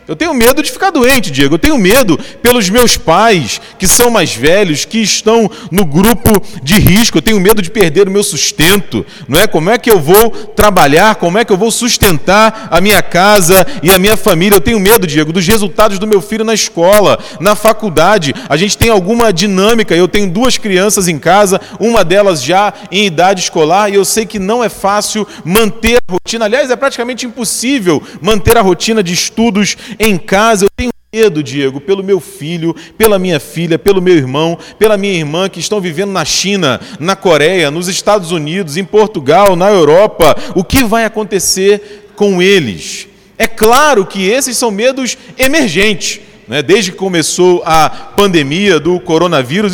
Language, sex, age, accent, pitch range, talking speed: Portuguese, male, 40-59, Brazilian, 175-220 Hz, 185 wpm